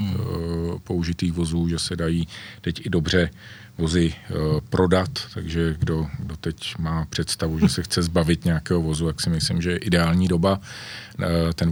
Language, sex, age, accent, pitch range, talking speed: Czech, male, 40-59, native, 80-90 Hz, 155 wpm